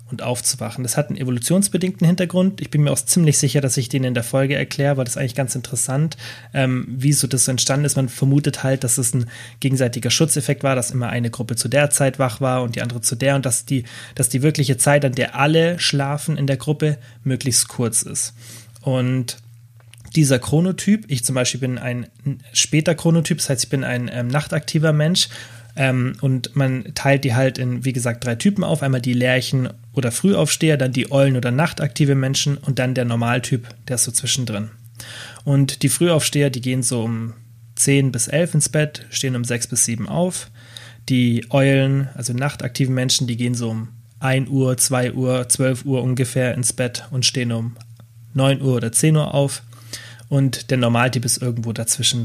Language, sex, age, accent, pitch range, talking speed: German, male, 30-49, German, 120-140 Hz, 200 wpm